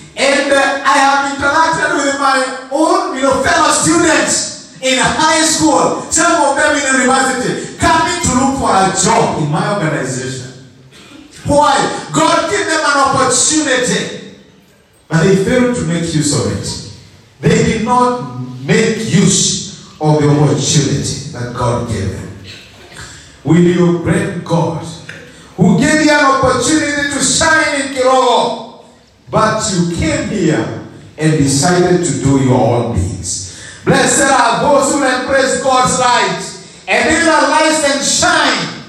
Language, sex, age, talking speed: English, male, 50-69, 145 wpm